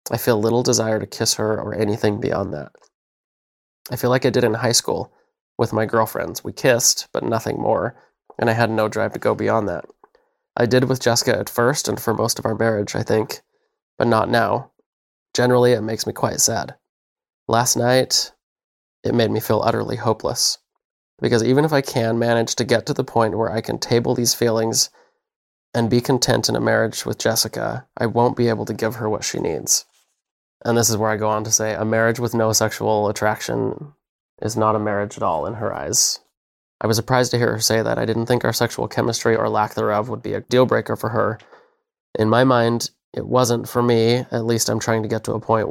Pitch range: 110-125 Hz